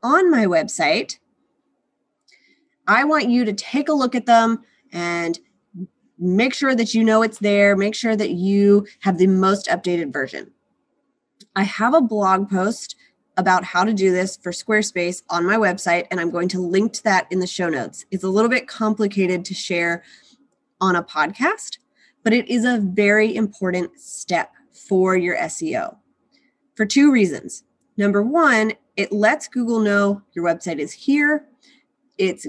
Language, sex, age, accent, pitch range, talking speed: English, female, 20-39, American, 185-255 Hz, 165 wpm